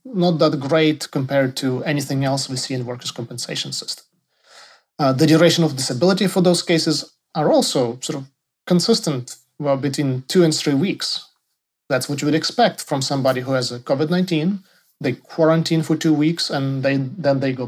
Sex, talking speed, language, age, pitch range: male, 180 wpm, English, 30-49, 130-160 Hz